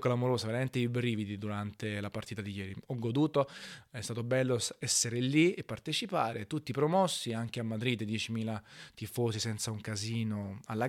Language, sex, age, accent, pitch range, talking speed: Italian, male, 20-39, native, 115-145 Hz, 160 wpm